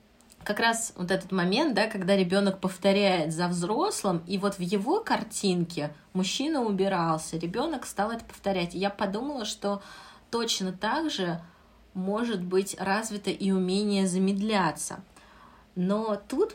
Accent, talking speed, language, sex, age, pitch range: native, 135 wpm, Russian, female, 20-39, 180-205 Hz